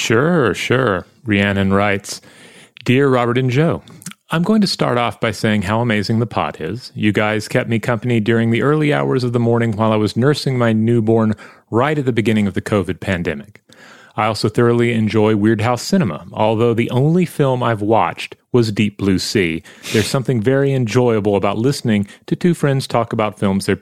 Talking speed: 190 wpm